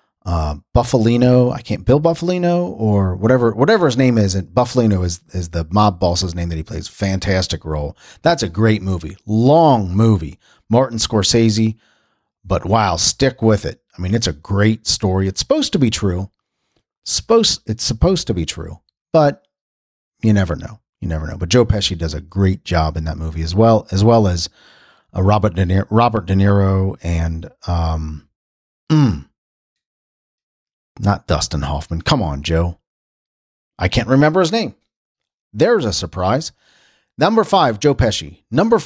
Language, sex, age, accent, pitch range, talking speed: English, male, 40-59, American, 85-120 Hz, 160 wpm